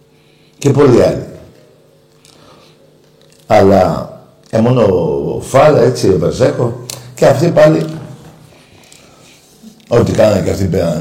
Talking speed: 95 wpm